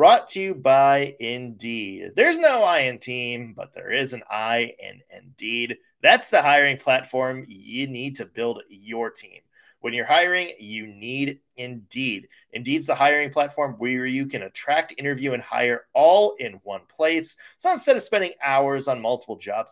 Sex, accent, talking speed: male, American, 170 wpm